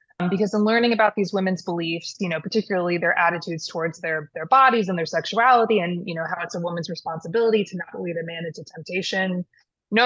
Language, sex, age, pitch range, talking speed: English, female, 20-39, 170-205 Hz, 210 wpm